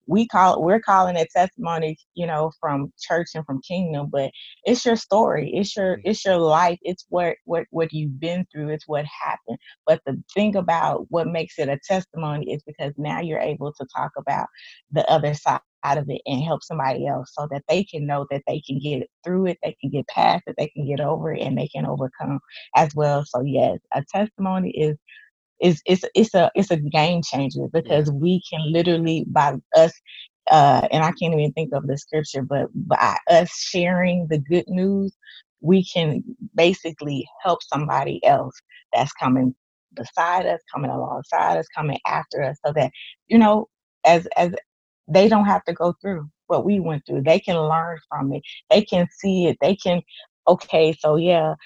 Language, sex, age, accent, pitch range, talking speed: English, female, 20-39, American, 150-185 Hz, 195 wpm